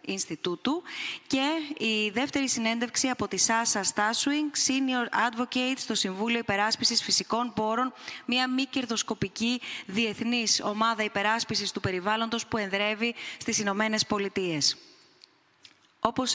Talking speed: 105 wpm